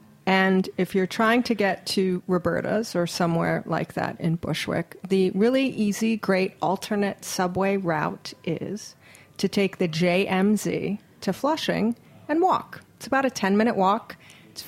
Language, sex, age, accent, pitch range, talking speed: English, female, 40-59, American, 175-205 Hz, 145 wpm